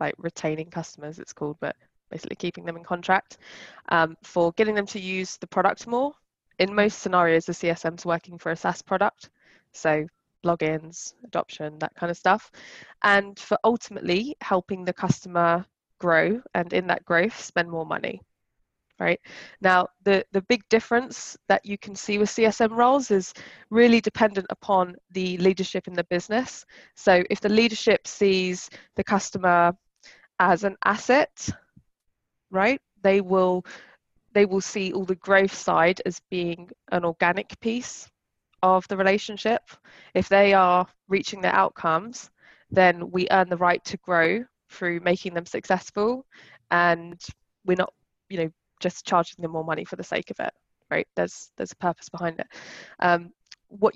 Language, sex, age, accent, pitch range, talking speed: English, female, 20-39, British, 175-210 Hz, 160 wpm